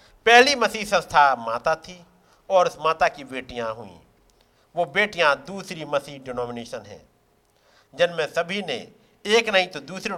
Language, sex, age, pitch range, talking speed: Hindi, male, 50-69, 145-220 Hz, 140 wpm